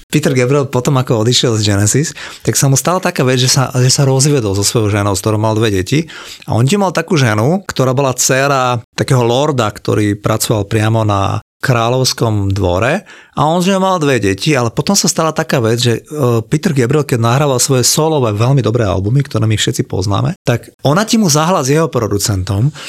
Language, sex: Slovak, male